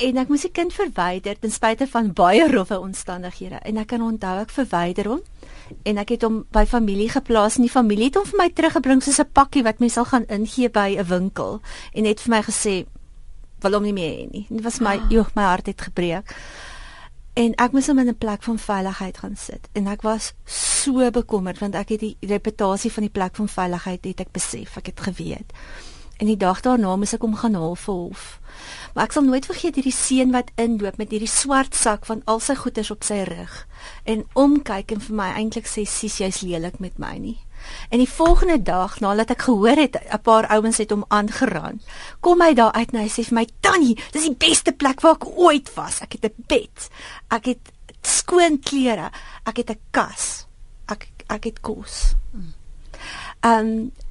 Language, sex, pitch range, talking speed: Dutch, female, 205-255 Hz, 210 wpm